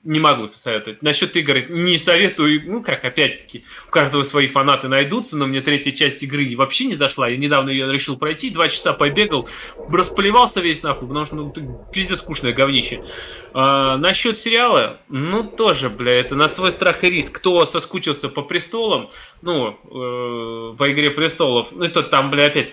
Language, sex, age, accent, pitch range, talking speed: Russian, male, 20-39, native, 135-165 Hz, 175 wpm